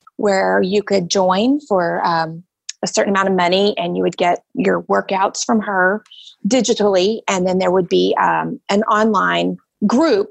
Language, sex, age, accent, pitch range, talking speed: English, female, 30-49, American, 185-250 Hz, 170 wpm